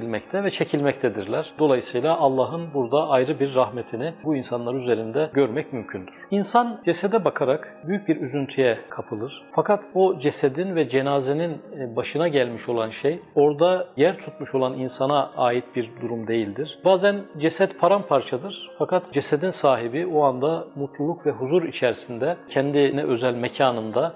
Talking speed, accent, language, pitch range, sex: 130 wpm, native, Turkish, 125-165 Hz, male